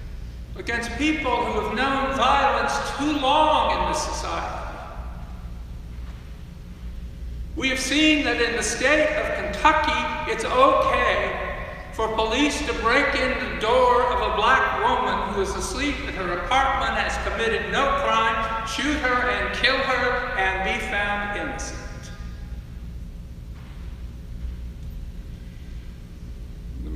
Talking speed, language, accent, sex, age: 120 wpm, English, American, male, 60-79